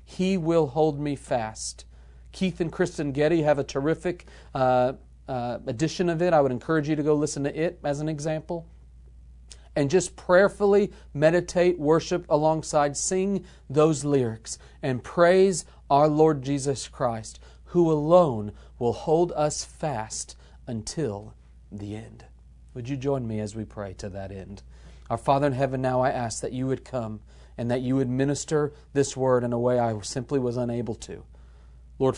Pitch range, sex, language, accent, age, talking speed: 105-140 Hz, male, English, American, 40-59, 170 wpm